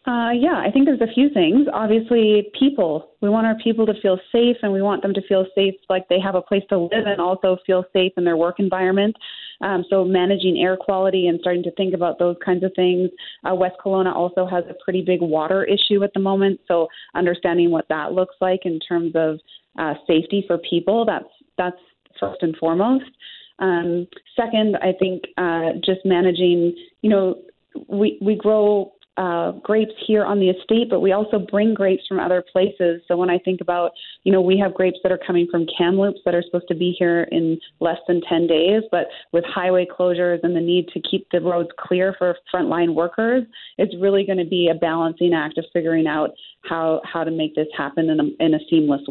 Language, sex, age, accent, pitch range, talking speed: English, female, 30-49, American, 175-200 Hz, 210 wpm